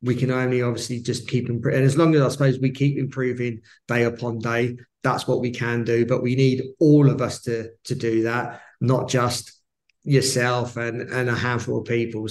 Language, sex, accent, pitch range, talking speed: English, male, British, 125-150 Hz, 210 wpm